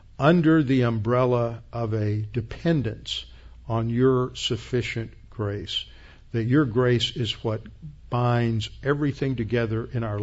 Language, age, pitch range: English, 50-69, 110-130 Hz